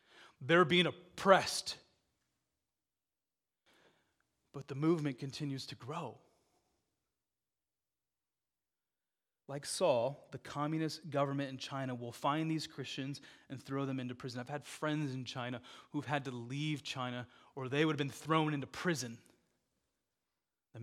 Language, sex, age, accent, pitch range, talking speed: English, male, 30-49, American, 140-185 Hz, 125 wpm